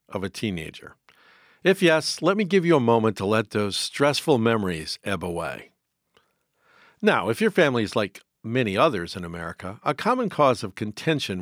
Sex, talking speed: male, 175 wpm